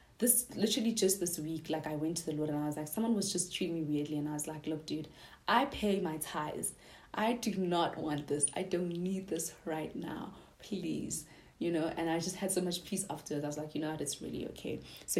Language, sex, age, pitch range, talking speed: English, female, 20-39, 155-185 Hz, 250 wpm